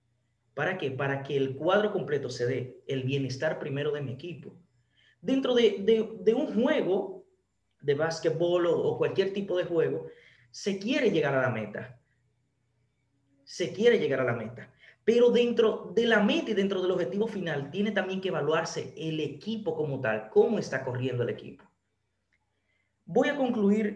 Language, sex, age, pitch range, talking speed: Spanish, male, 30-49, 130-205 Hz, 170 wpm